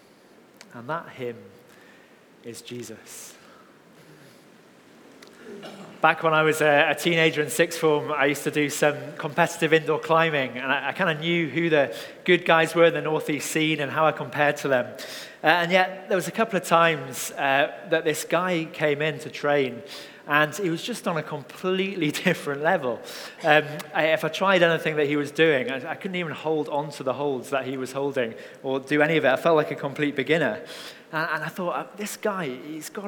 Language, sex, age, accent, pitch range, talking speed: English, male, 30-49, British, 145-175 Hz, 195 wpm